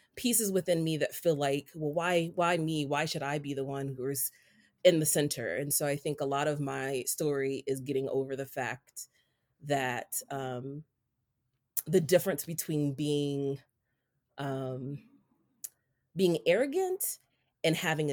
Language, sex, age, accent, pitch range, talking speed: English, female, 30-49, American, 135-160 Hz, 150 wpm